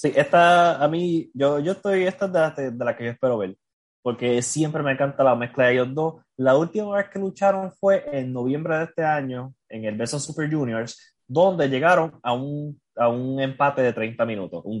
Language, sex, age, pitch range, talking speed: Spanish, male, 20-39, 115-140 Hz, 210 wpm